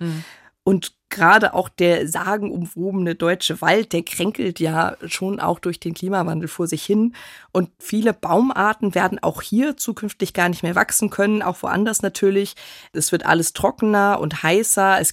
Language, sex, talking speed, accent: German, female, 160 wpm, German